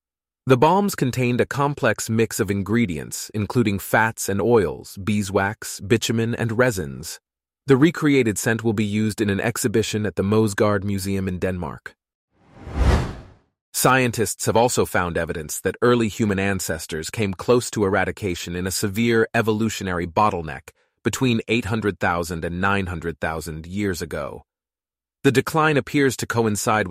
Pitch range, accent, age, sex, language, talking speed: 95-120 Hz, American, 30-49, male, English, 135 wpm